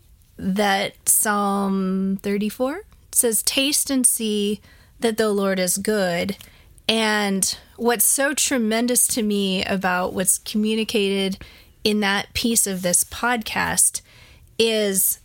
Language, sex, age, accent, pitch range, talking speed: English, female, 30-49, American, 190-235 Hz, 110 wpm